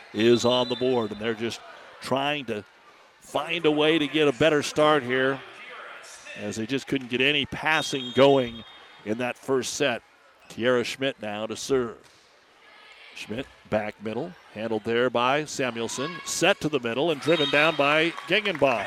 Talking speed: 160 wpm